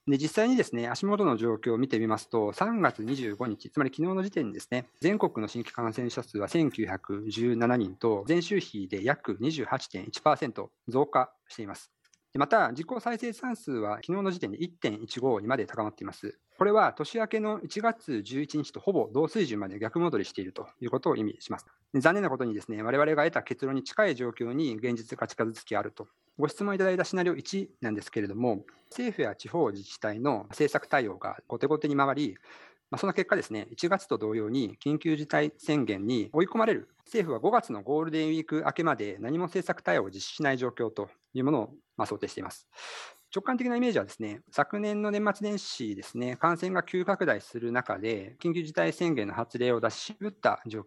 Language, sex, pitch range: Japanese, male, 115-180 Hz